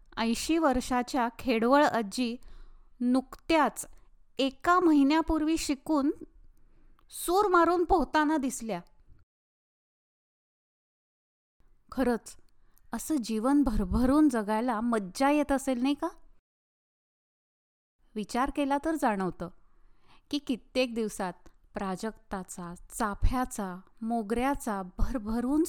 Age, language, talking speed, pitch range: 20-39, Marathi, 80 wpm, 210-275 Hz